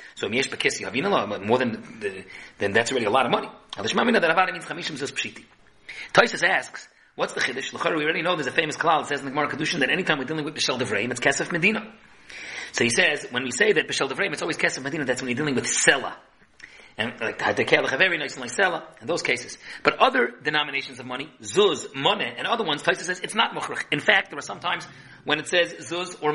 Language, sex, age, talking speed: English, male, 40-59, 210 wpm